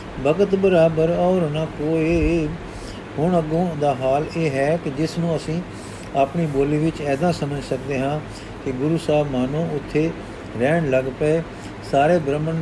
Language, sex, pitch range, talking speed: Punjabi, male, 135-165 Hz, 145 wpm